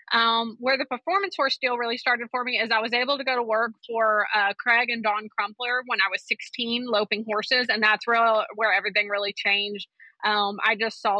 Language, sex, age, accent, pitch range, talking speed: English, female, 20-39, American, 210-245 Hz, 215 wpm